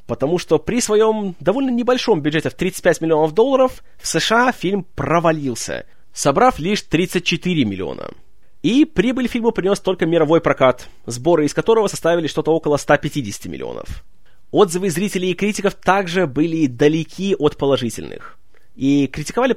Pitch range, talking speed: 145-195 Hz, 140 wpm